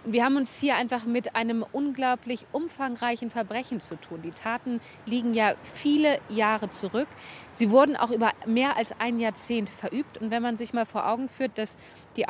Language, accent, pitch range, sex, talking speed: German, German, 200-250 Hz, female, 185 wpm